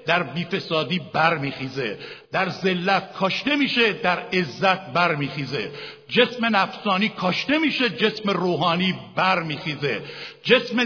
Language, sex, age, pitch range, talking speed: Persian, male, 60-79, 180-245 Hz, 100 wpm